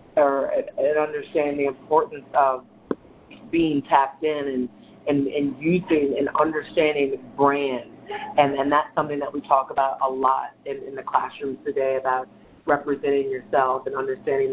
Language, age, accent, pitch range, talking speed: English, 30-49, American, 135-155 Hz, 150 wpm